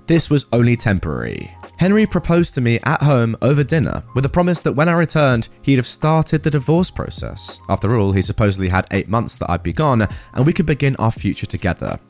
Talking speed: 215 wpm